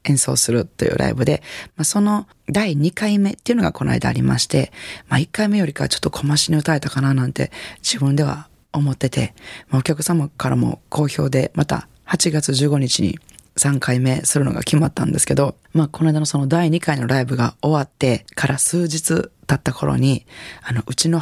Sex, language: female, Japanese